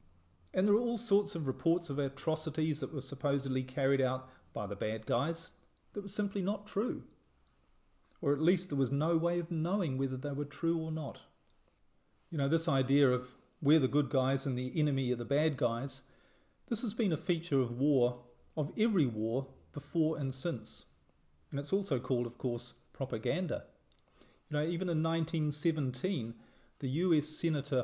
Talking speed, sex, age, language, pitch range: 175 wpm, male, 40-59, English, 130-165 Hz